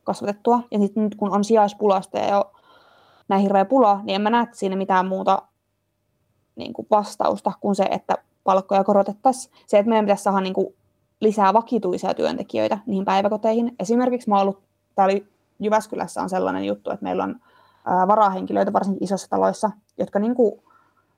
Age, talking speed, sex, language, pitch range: 20-39, 145 wpm, female, Finnish, 180-210 Hz